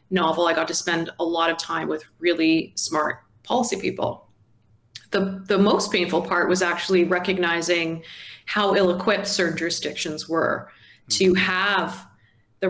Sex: female